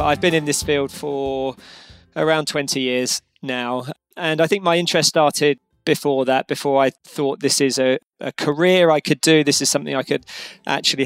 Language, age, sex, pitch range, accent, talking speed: English, 20-39, male, 140-165 Hz, British, 190 wpm